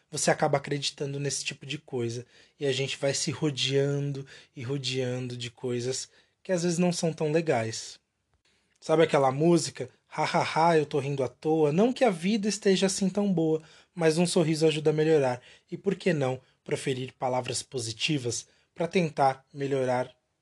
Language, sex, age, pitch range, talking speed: Portuguese, male, 20-39, 125-160 Hz, 175 wpm